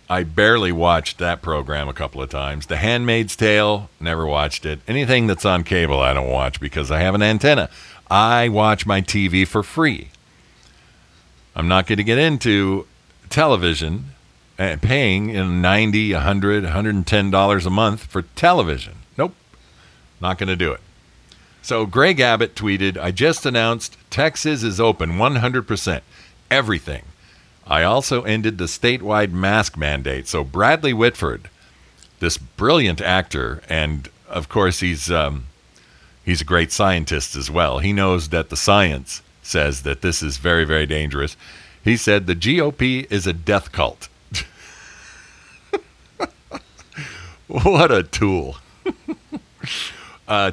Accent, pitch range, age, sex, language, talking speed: American, 80-115 Hz, 50-69, male, English, 140 wpm